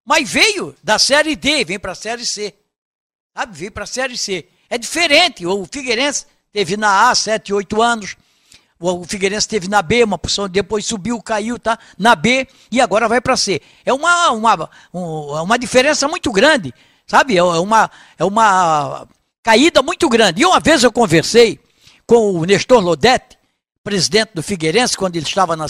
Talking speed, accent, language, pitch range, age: 175 wpm, Brazilian, Portuguese, 205-270 Hz, 60-79